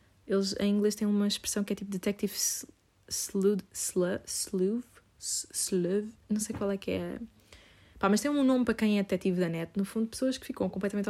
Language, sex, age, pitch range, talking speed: Portuguese, female, 20-39, 190-220 Hz, 190 wpm